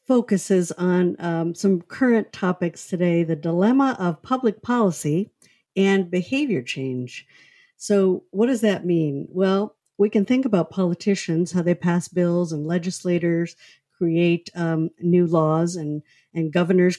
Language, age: English, 50-69